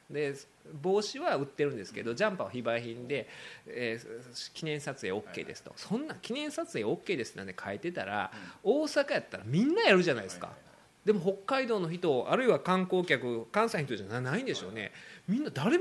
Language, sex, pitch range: Japanese, male, 120-195 Hz